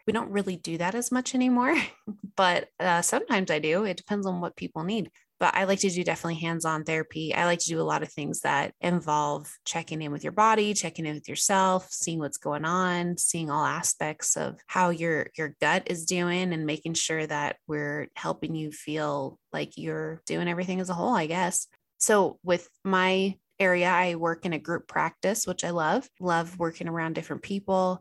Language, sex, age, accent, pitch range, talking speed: English, female, 20-39, American, 160-190 Hz, 205 wpm